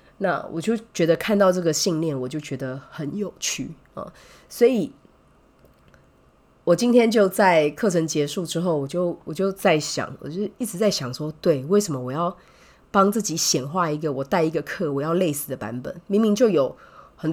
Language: Chinese